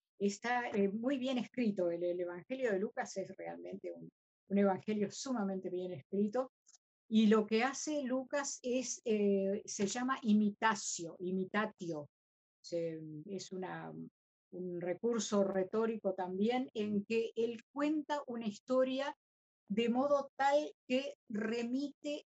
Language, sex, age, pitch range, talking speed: Spanish, female, 50-69, 195-250 Hz, 130 wpm